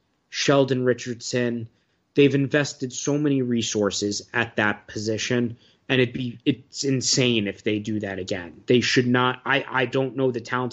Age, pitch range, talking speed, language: 20-39, 110-125 Hz, 160 wpm, English